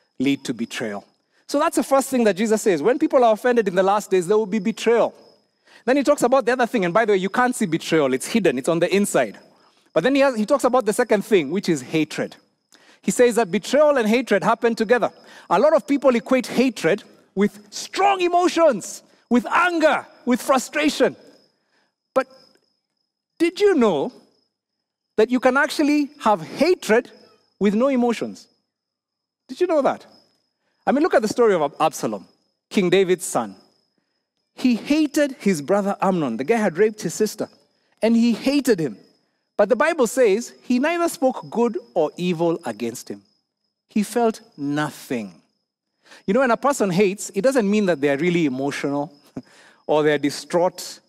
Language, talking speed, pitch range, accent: English, 175 wpm, 185-265 Hz, South African